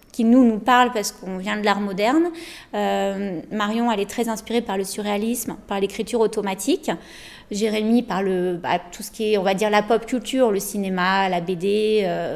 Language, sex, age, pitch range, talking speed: French, female, 20-39, 195-240 Hz, 200 wpm